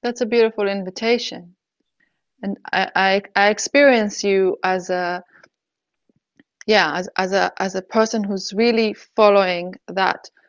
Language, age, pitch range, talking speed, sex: English, 20-39, 185-225 Hz, 130 wpm, female